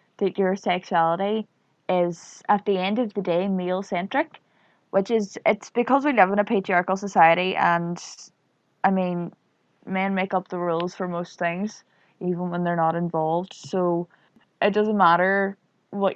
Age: 20-39